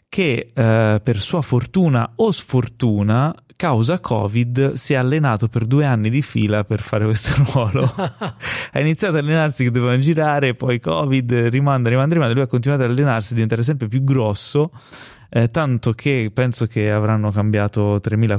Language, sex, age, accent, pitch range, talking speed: Italian, male, 20-39, native, 105-130 Hz, 165 wpm